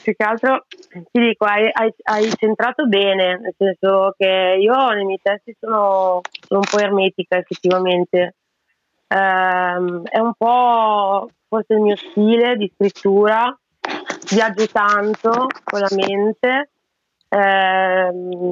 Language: Italian